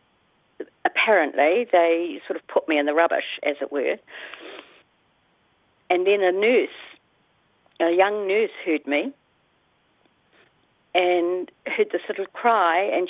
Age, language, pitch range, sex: 50-69, English, 155-205 Hz, female